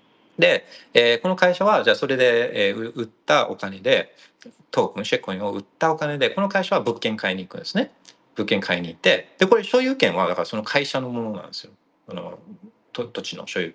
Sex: male